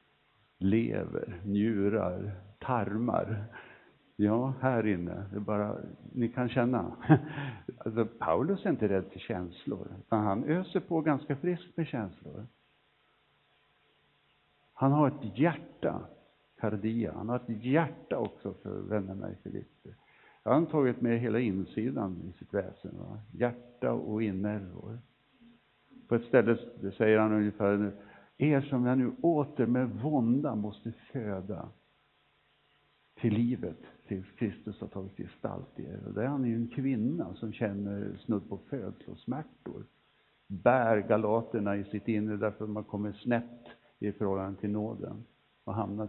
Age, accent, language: 60-79, Norwegian, Swedish